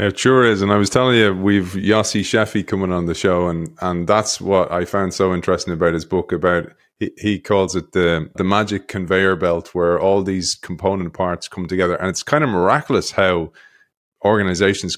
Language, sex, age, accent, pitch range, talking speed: English, male, 20-39, Irish, 90-105 Hz, 200 wpm